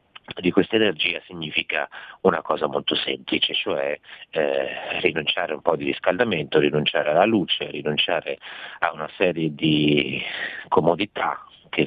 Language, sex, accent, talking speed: Italian, male, native, 125 wpm